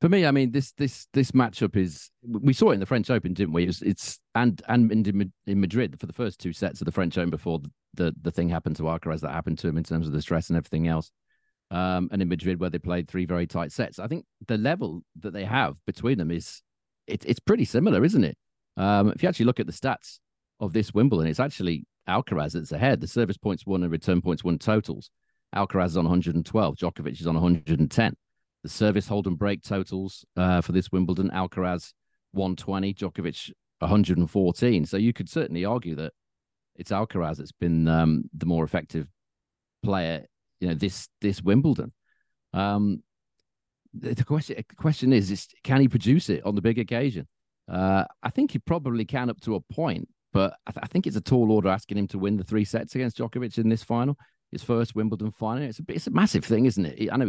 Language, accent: English, British